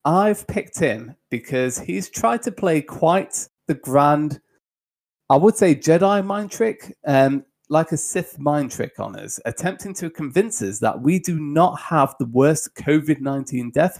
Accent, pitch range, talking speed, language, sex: British, 120-165 Hz, 165 wpm, English, male